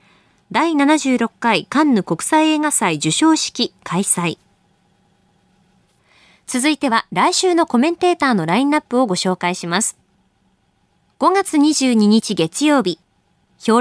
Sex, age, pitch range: female, 20-39, 195-280 Hz